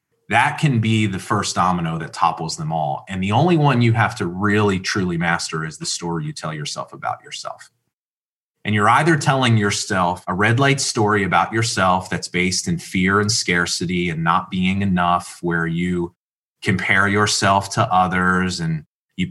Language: English